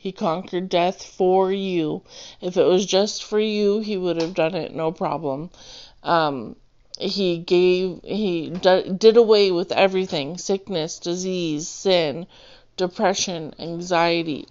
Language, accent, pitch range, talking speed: English, American, 170-195 Hz, 125 wpm